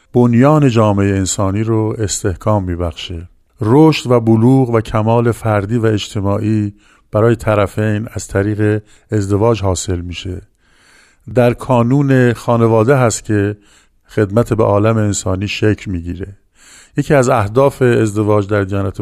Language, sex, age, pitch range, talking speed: Persian, male, 50-69, 100-125 Hz, 125 wpm